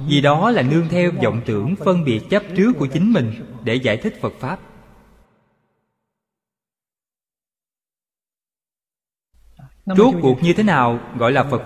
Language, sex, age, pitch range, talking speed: Vietnamese, male, 20-39, 130-195 Hz, 140 wpm